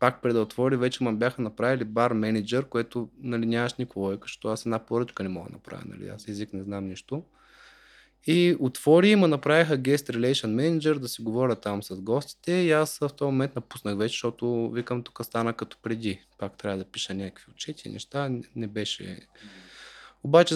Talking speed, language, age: 185 wpm, Bulgarian, 20-39